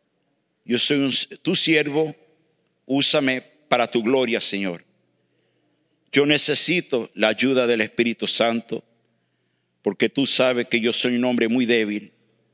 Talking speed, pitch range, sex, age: 125 wpm, 115-185 Hz, male, 50-69